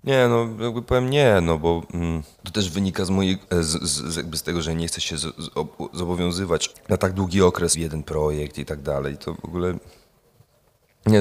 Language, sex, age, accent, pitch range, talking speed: Polish, male, 30-49, native, 80-100 Hz, 215 wpm